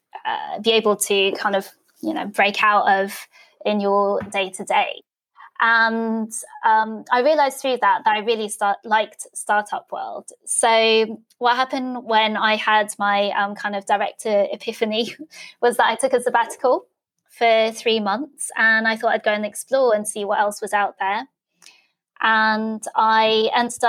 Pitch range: 210-240 Hz